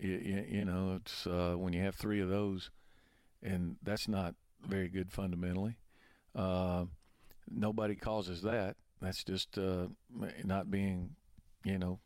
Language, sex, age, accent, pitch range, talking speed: English, male, 50-69, American, 95-110 Hz, 135 wpm